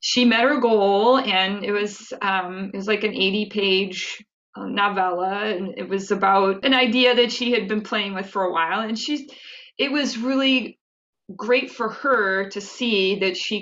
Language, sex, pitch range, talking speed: English, female, 195-245 Hz, 185 wpm